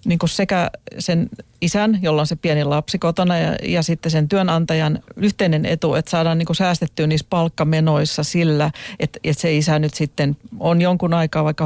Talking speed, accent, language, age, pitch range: 180 wpm, native, Finnish, 40-59, 155-185 Hz